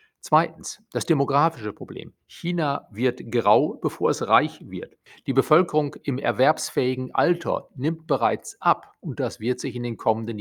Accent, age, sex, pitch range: German, 50-69, male, 120-155 Hz